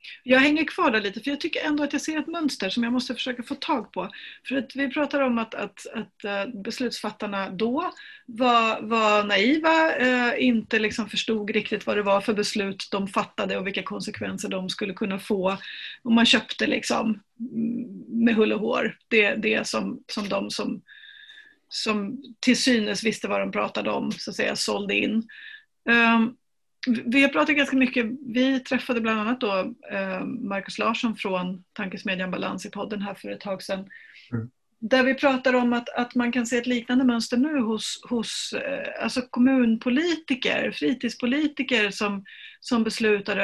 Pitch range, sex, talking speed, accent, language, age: 205-260 Hz, female, 165 wpm, native, Swedish, 40-59